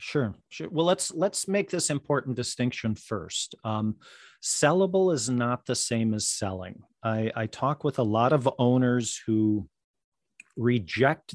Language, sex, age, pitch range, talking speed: English, male, 40-59, 110-130 Hz, 150 wpm